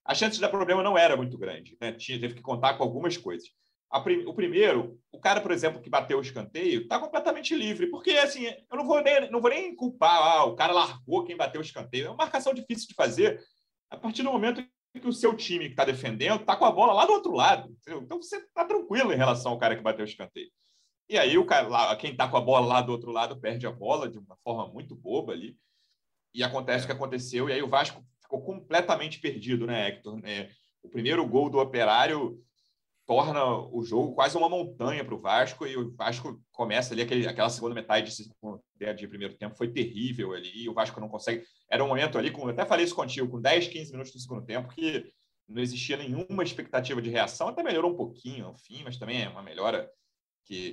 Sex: male